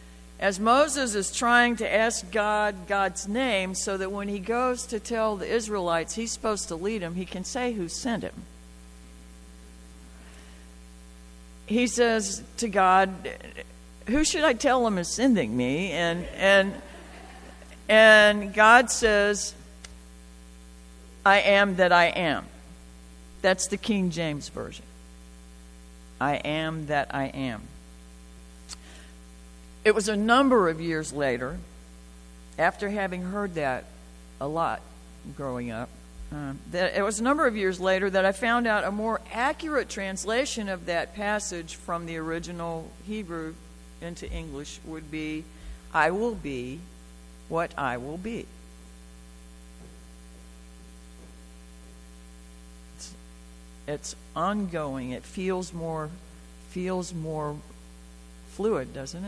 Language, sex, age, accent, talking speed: English, female, 60-79, American, 120 wpm